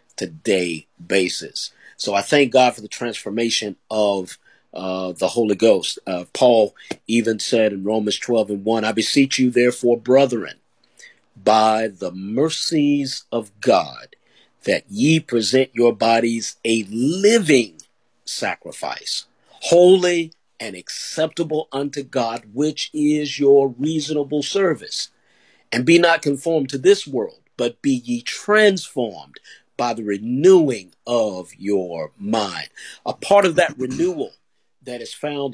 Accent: American